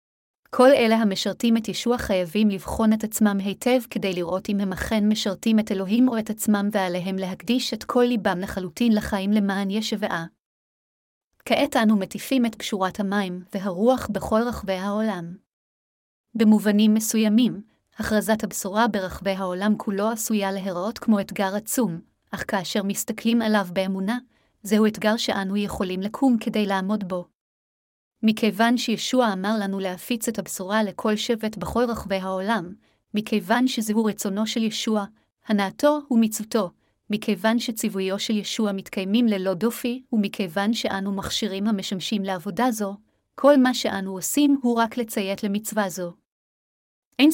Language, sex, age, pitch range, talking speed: Hebrew, female, 30-49, 195-230 Hz, 135 wpm